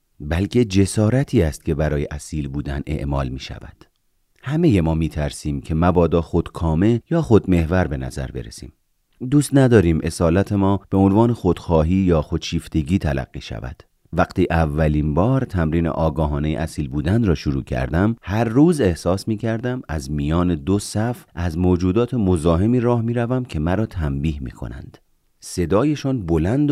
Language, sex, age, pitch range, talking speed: Persian, male, 40-59, 80-115 Hz, 150 wpm